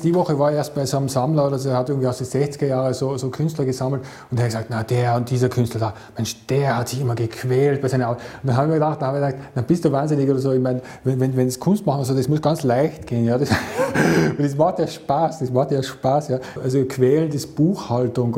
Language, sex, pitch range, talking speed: German, male, 120-140 Hz, 270 wpm